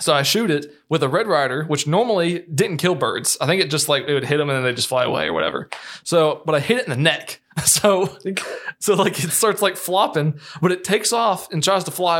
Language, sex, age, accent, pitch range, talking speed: English, male, 20-39, American, 140-175 Hz, 260 wpm